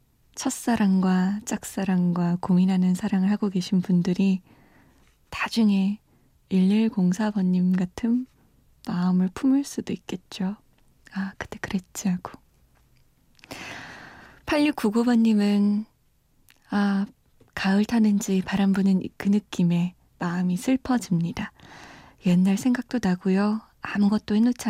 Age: 20-39